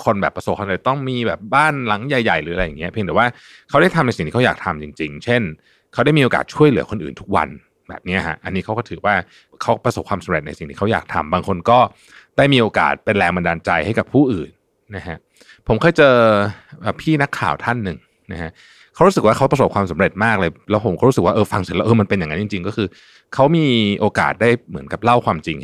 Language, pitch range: Thai, 90-120 Hz